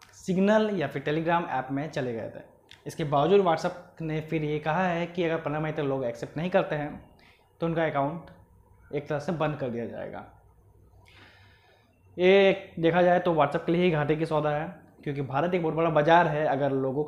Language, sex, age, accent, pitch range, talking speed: Hindi, male, 20-39, native, 140-175 Hz, 200 wpm